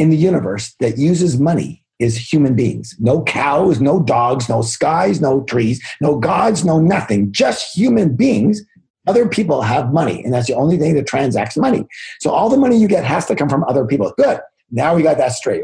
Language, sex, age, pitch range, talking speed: English, male, 50-69, 110-160 Hz, 205 wpm